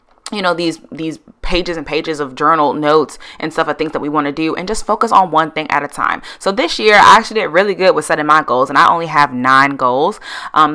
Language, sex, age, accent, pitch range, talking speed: English, female, 20-39, American, 155-200 Hz, 260 wpm